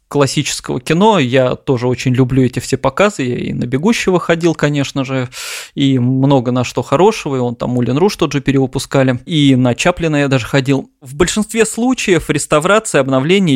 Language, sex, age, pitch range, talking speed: Russian, male, 20-39, 125-150 Hz, 175 wpm